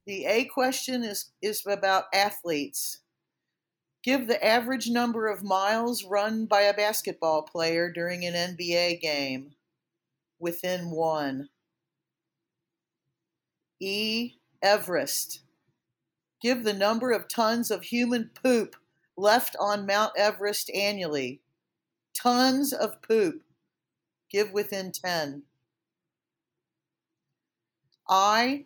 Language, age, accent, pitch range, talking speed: English, 50-69, American, 170-230 Hz, 95 wpm